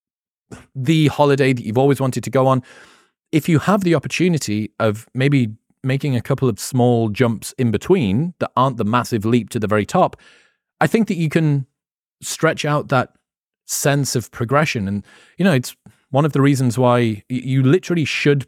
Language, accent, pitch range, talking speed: English, British, 110-145 Hz, 180 wpm